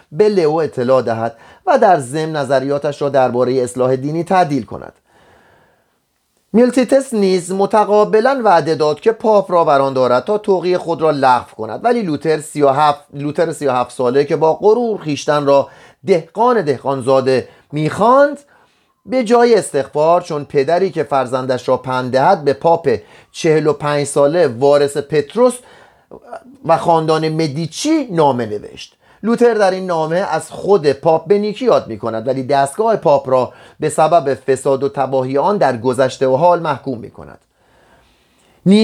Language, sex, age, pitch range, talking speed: Persian, male, 30-49, 135-190 Hz, 145 wpm